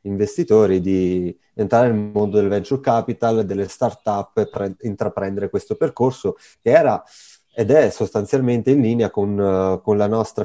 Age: 30-49